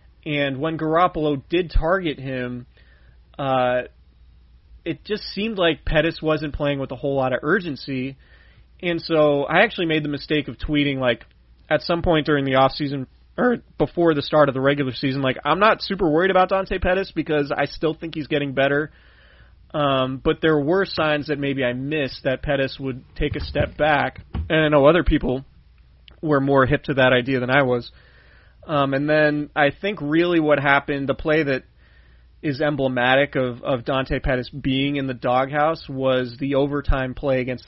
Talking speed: 185 wpm